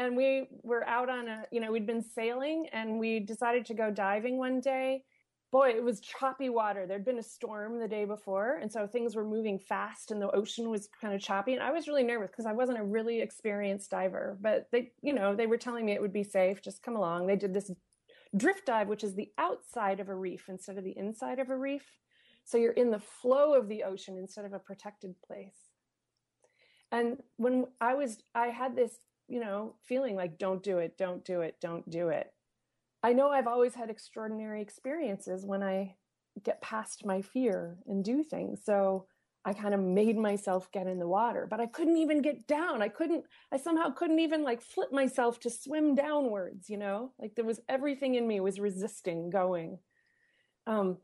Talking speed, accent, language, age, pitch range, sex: 210 wpm, American, English, 30-49, 200-255 Hz, female